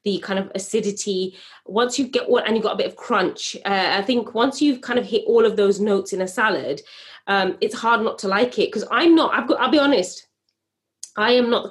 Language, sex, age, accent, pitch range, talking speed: English, female, 20-39, British, 195-240 Hz, 240 wpm